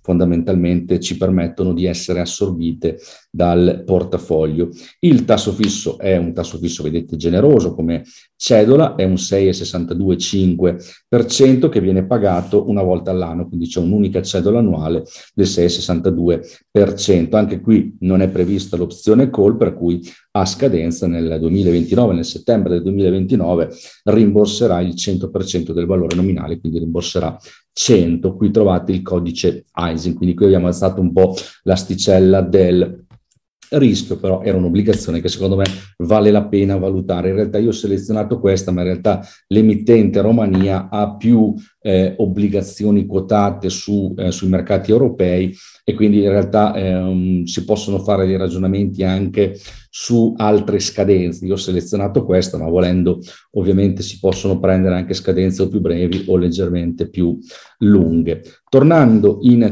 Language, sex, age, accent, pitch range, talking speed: Russian, male, 40-59, Italian, 90-100 Hz, 145 wpm